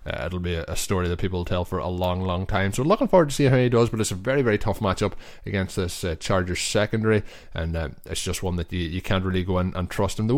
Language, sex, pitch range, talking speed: English, male, 90-110 Hz, 285 wpm